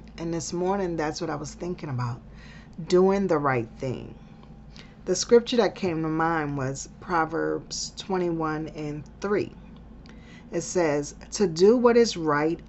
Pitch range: 145-190 Hz